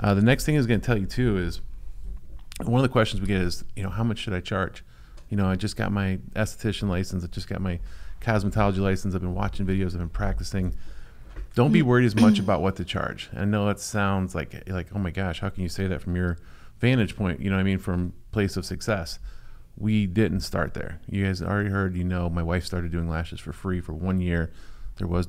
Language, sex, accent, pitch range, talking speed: English, male, American, 90-105 Hz, 245 wpm